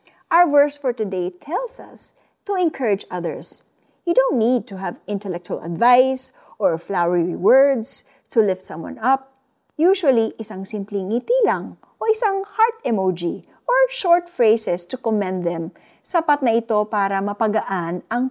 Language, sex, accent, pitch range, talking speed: Filipino, female, native, 190-265 Hz, 145 wpm